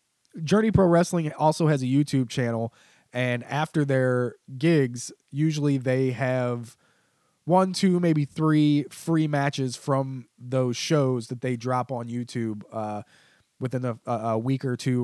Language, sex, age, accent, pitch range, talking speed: English, male, 20-39, American, 120-150 Hz, 145 wpm